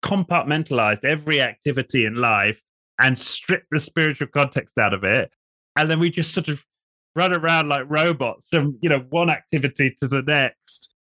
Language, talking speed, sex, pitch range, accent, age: English, 165 wpm, male, 125-160 Hz, British, 20-39